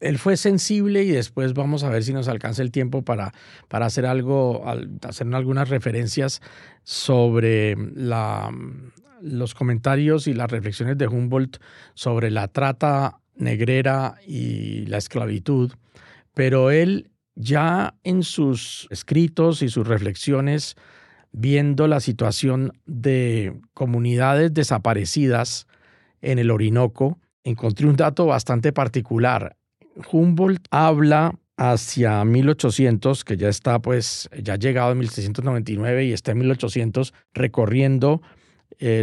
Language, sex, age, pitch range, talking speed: Spanish, male, 40-59, 120-155 Hz, 120 wpm